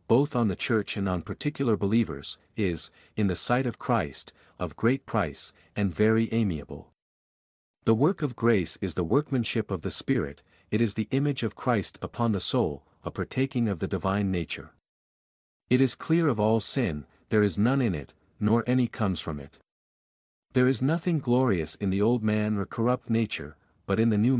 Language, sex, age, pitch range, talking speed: English, male, 50-69, 95-125 Hz, 185 wpm